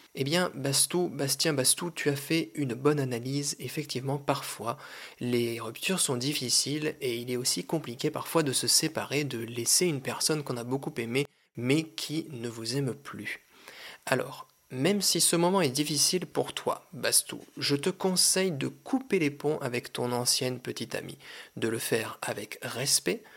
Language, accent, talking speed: French, French, 170 wpm